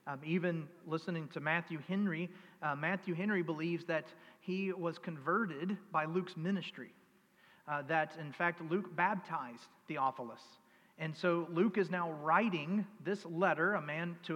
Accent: American